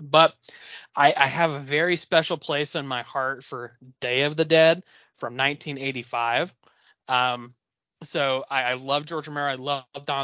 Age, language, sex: 20-39, English, male